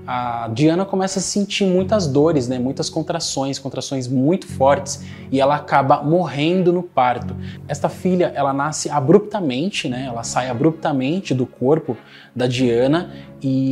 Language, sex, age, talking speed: Portuguese, male, 20-39, 145 wpm